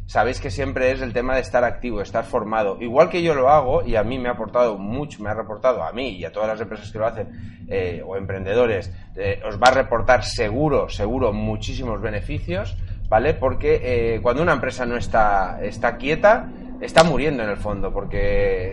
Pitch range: 100-140 Hz